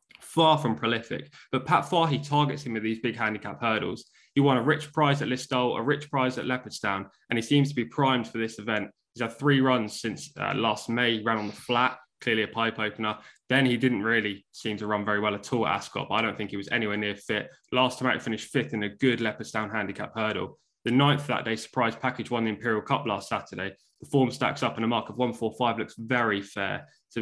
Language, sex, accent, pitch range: English, male, British, 110-130 Hz